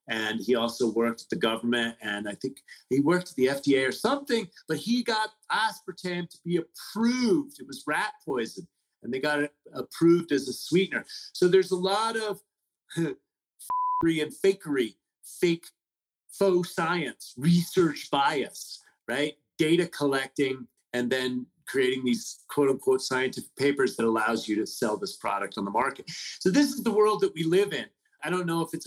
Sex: male